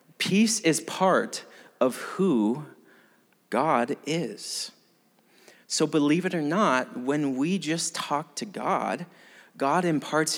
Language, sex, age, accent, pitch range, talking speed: English, male, 30-49, American, 140-180 Hz, 115 wpm